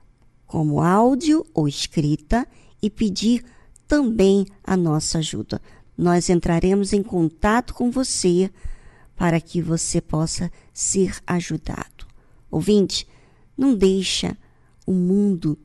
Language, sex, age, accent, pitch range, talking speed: Portuguese, male, 50-69, Brazilian, 170-215 Hz, 105 wpm